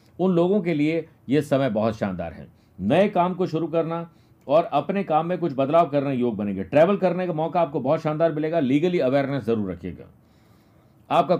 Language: Hindi